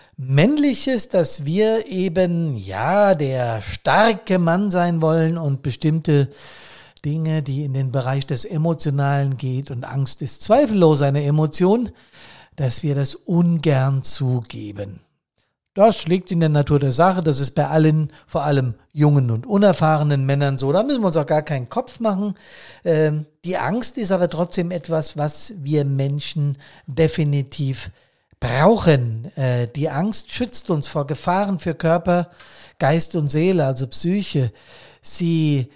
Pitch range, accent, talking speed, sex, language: 140-185 Hz, German, 140 wpm, male, German